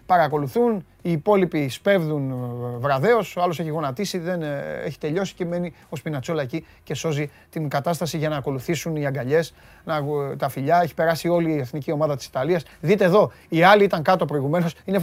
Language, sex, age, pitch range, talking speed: Greek, male, 30-49, 140-185 Hz, 175 wpm